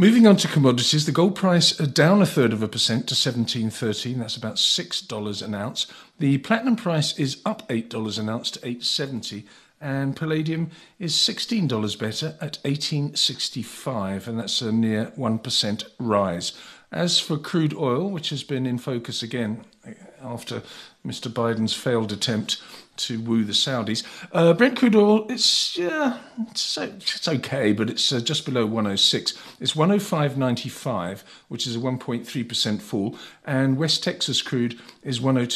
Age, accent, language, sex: 50-69, British, English, male